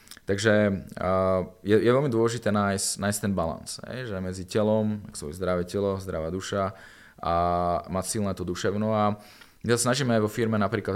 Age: 20-39